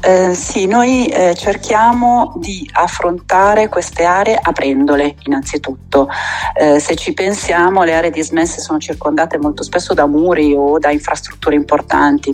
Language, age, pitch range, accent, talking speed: Italian, 40-59, 145-195 Hz, native, 135 wpm